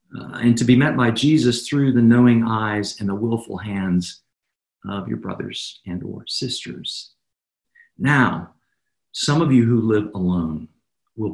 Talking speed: 155 wpm